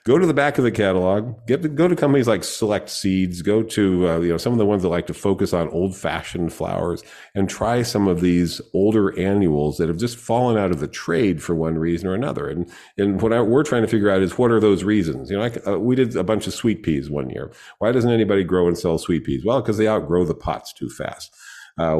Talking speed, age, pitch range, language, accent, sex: 260 wpm, 40-59, 85-110 Hz, English, American, male